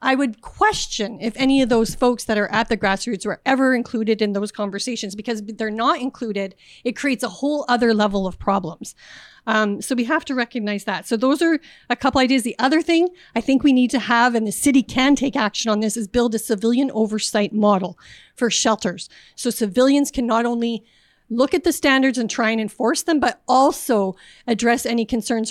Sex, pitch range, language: female, 215-265 Hz, English